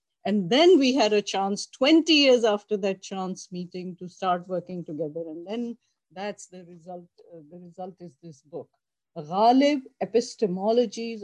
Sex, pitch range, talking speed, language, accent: female, 180-240 Hz, 155 wpm, English, Indian